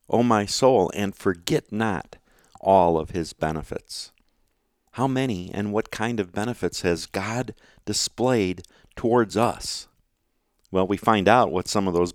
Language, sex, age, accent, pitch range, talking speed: English, male, 50-69, American, 95-125 Hz, 150 wpm